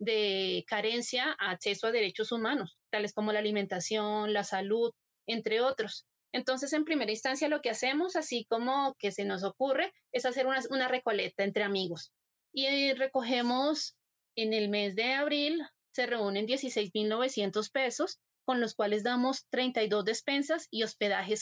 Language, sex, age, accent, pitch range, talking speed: Spanish, female, 20-39, Colombian, 215-260 Hz, 150 wpm